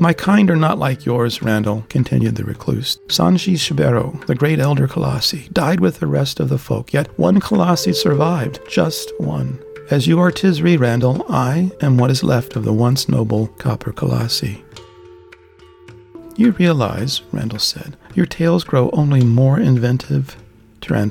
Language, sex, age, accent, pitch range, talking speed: English, male, 60-79, American, 120-155 Hz, 160 wpm